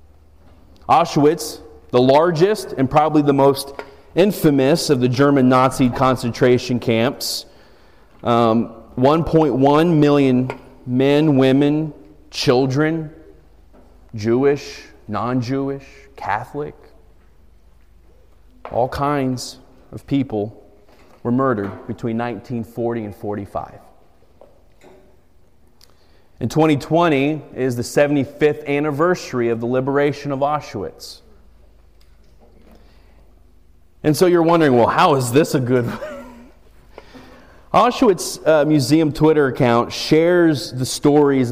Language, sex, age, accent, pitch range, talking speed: English, male, 30-49, American, 100-145 Hz, 90 wpm